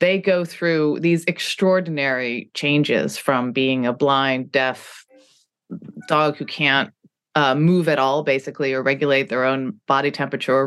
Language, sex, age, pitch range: English, female, 30-49, 140-180 Hz